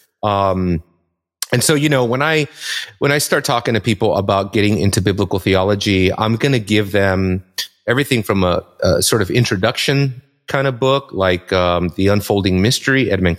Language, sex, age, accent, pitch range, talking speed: English, male, 30-49, American, 95-130 Hz, 175 wpm